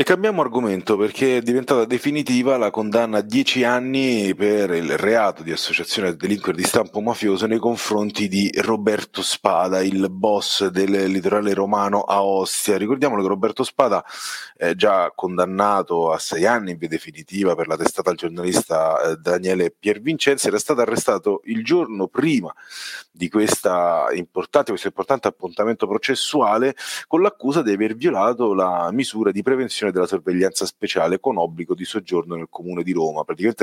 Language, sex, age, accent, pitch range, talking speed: Italian, male, 30-49, native, 95-120 Hz, 155 wpm